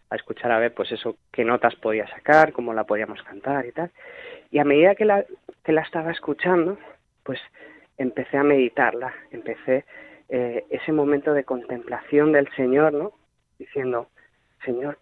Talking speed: 160 wpm